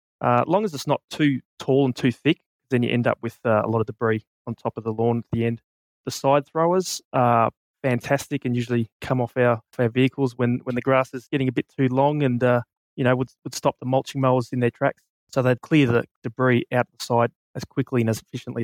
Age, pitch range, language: 20-39, 120-140 Hz, English